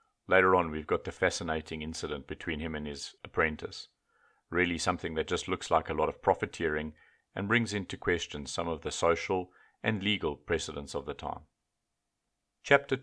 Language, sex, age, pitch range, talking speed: English, male, 40-59, 80-105 Hz, 170 wpm